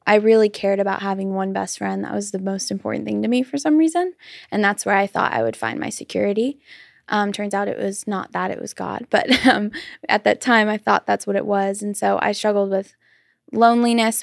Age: 10-29